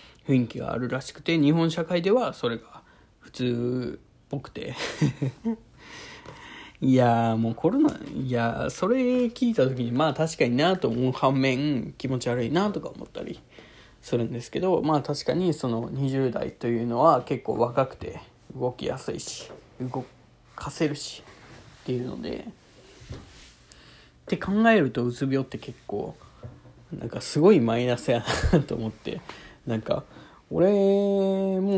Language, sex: Japanese, male